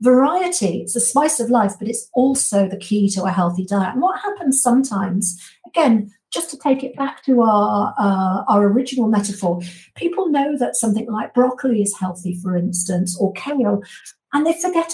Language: English